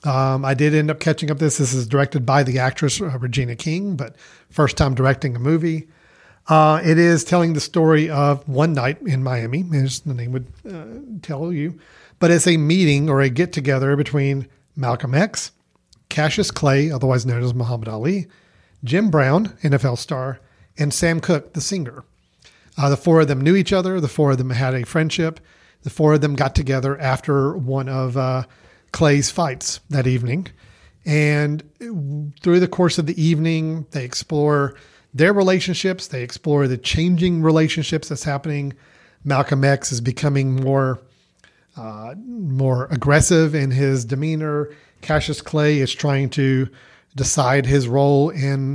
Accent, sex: American, male